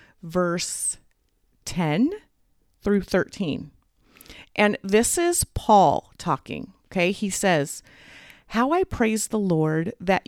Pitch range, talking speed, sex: 160-230 Hz, 105 wpm, female